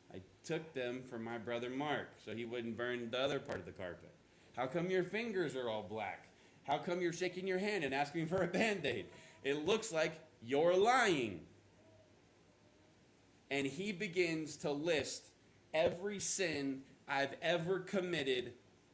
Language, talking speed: English, 155 wpm